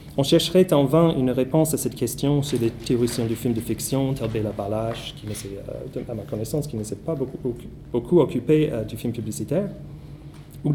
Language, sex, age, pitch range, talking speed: French, male, 30-49, 120-165 Hz, 190 wpm